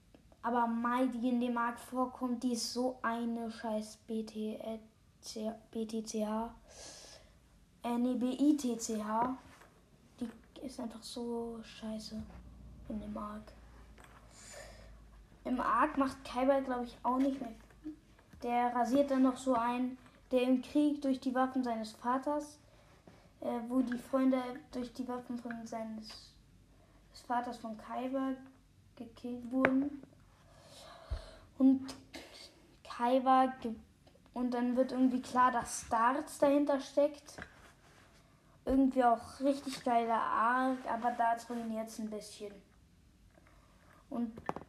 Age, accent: 10-29, German